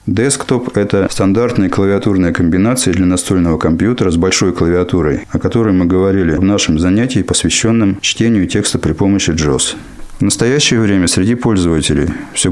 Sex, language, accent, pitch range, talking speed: male, Russian, native, 95-115 Hz, 145 wpm